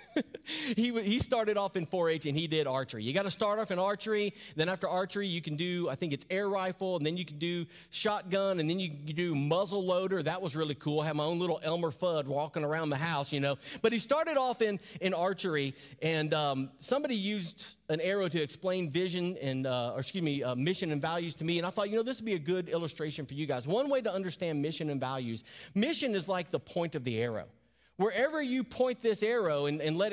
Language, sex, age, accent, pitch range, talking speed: English, male, 40-59, American, 145-195 Hz, 245 wpm